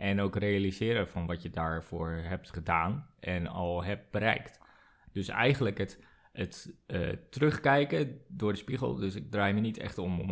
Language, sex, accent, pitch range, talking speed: Dutch, male, Dutch, 100-140 Hz, 175 wpm